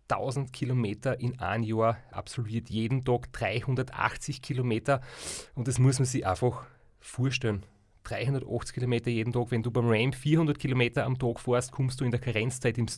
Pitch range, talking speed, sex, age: 115-135 Hz, 165 wpm, male, 30-49